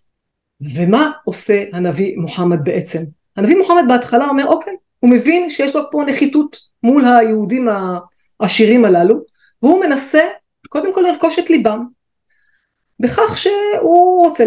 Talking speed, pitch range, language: 125 wpm, 205-275 Hz, Hebrew